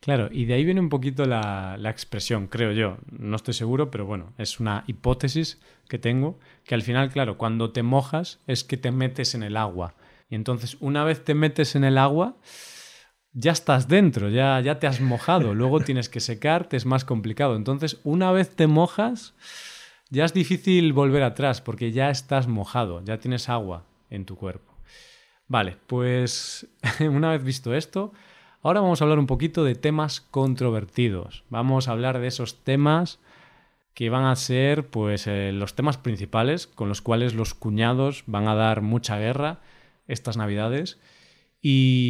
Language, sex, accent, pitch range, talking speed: Spanish, male, Spanish, 110-150 Hz, 175 wpm